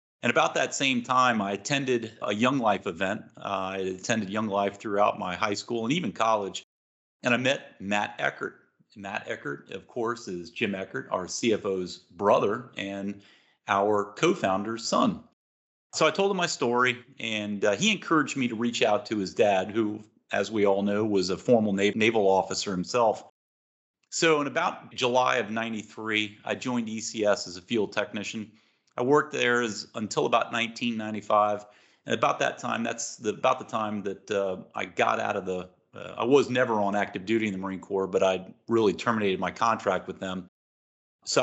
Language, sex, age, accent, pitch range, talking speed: English, male, 40-59, American, 100-120 Hz, 180 wpm